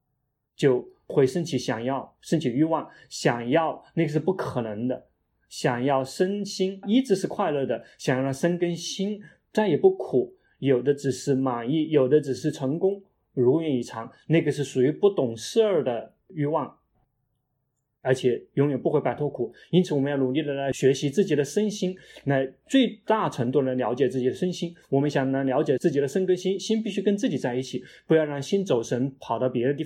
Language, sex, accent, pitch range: Chinese, male, native, 130-180 Hz